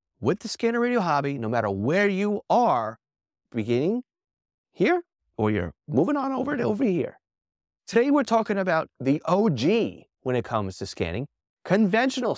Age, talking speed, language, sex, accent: 30-49, 155 wpm, English, male, American